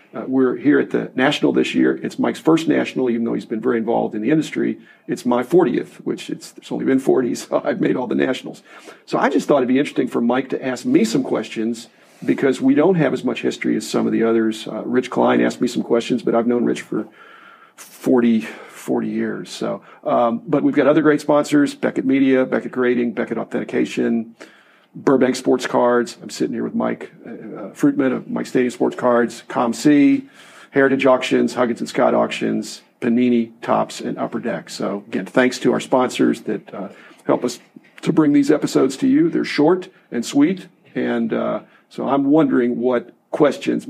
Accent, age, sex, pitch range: American, 40-59, male, 115-150 Hz